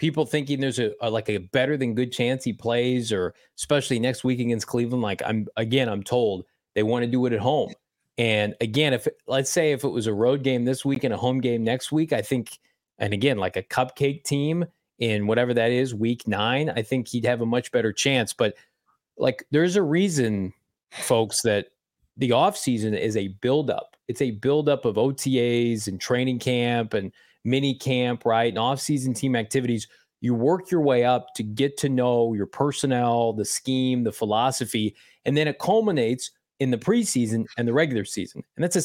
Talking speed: 200 wpm